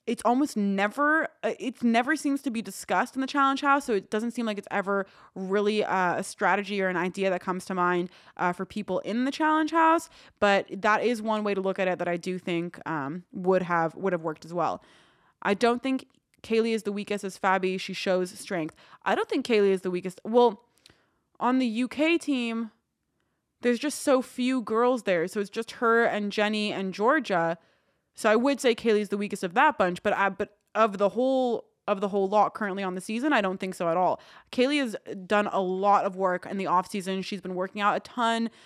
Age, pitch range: 20-39, 185-235 Hz